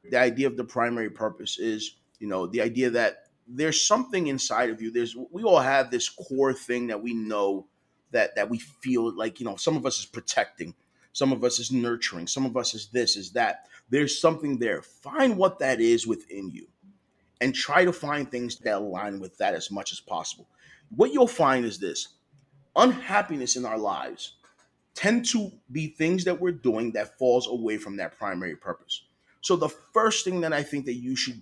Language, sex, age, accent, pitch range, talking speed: English, male, 30-49, American, 115-155 Hz, 200 wpm